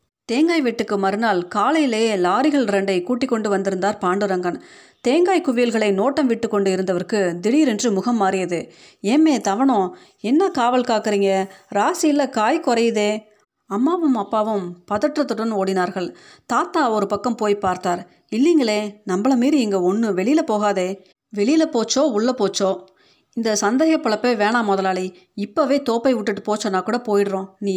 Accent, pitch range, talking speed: native, 190-245 Hz, 125 wpm